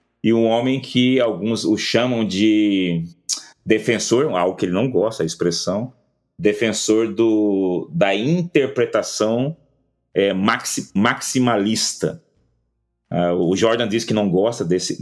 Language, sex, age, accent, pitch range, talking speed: Portuguese, male, 30-49, Brazilian, 90-115 Hz, 110 wpm